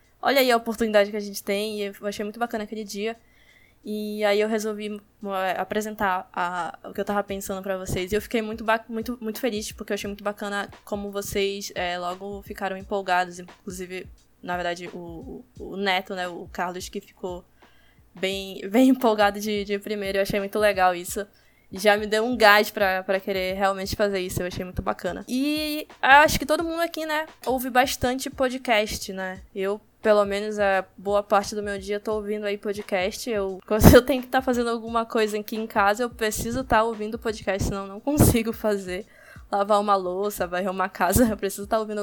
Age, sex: 10-29, female